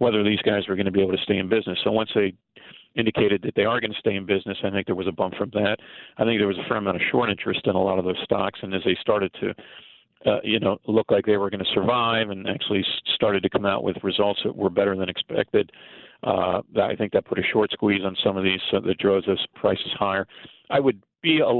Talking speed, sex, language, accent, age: 270 wpm, male, English, American, 40-59